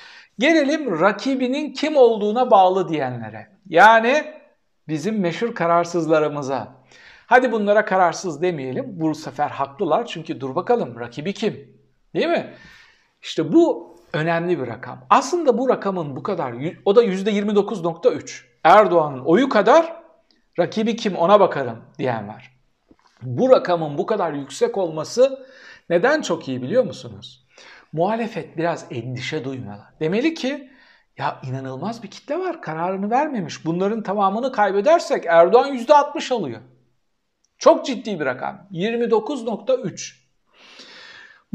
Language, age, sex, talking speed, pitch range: Turkish, 60-79, male, 115 wpm, 155-245 Hz